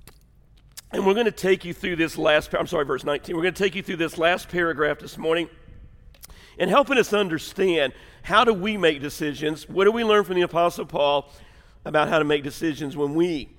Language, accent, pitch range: English, American, 145-175 Hz